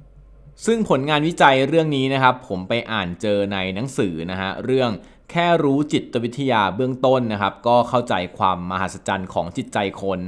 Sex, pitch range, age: male, 100-135 Hz, 20-39